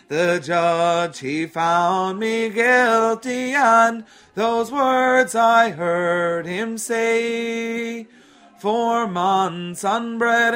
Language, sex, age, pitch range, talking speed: English, male, 30-49, 150-230 Hz, 90 wpm